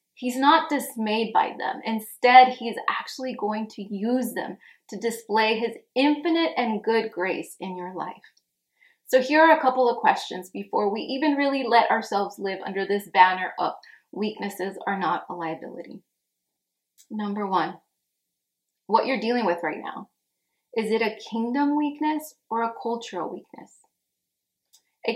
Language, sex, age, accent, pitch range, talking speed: English, female, 20-39, American, 200-260 Hz, 150 wpm